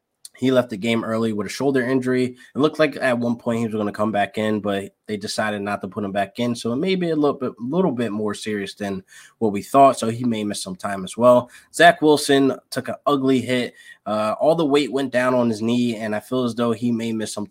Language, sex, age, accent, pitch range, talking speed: English, male, 20-39, American, 105-130 Hz, 260 wpm